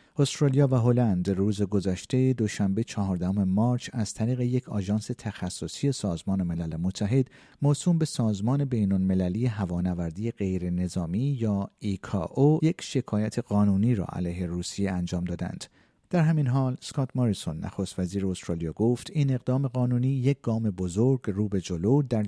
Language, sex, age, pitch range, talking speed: Persian, male, 50-69, 95-125 Hz, 145 wpm